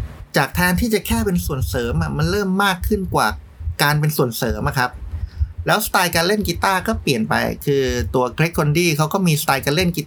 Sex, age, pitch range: male, 30-49, 95-150 Hz